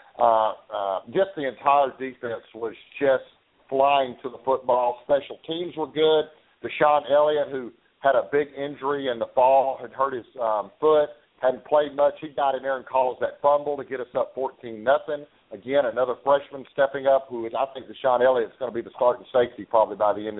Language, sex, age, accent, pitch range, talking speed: English, male, 50-69, American, 125-145 Hz, 205 wpm